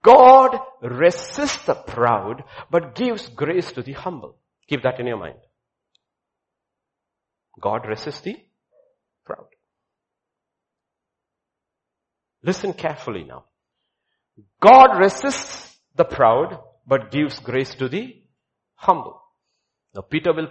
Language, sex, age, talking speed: English, male, 60-79, 100 wpm